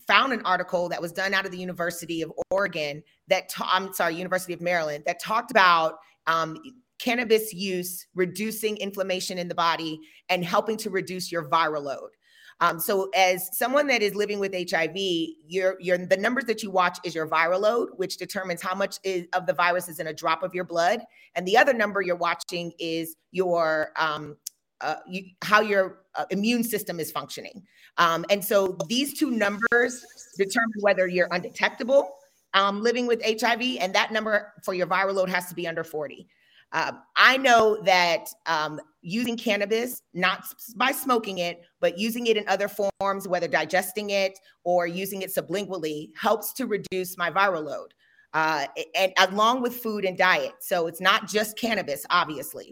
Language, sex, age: English, female, 30-49